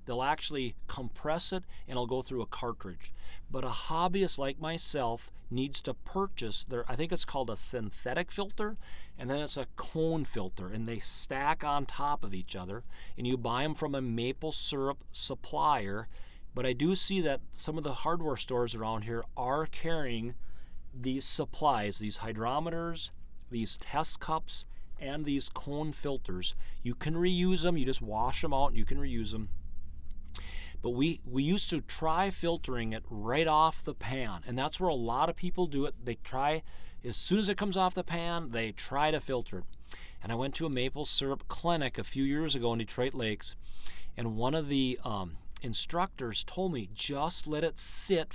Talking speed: 185 wpm